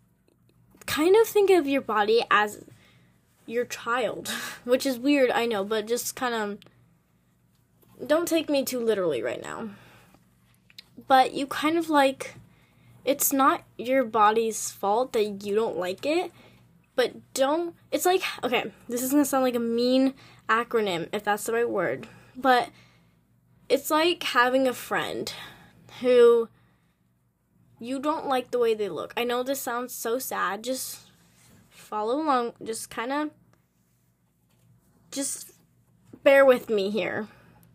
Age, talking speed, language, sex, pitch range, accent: 10-29, 140 wpm, English, female, 200-270 Hz, American